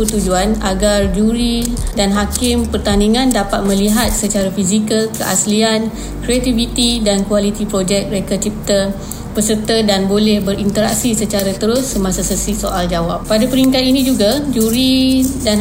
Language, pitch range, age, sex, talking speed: Malay, 200-225 Hz, 20-39, female, 125 wpm